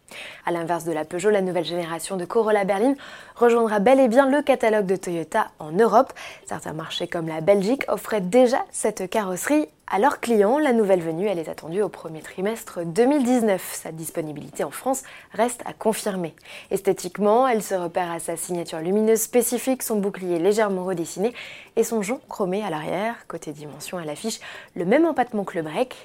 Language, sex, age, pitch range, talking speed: French, female, 20-39, 180-250 Hz, 180 wpm